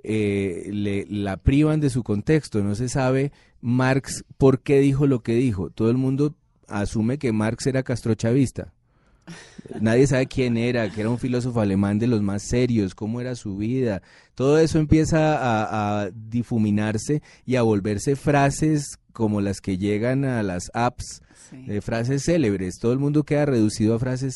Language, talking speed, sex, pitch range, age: Spanish, 170 wpm, male, 105-135 Hz, 30-49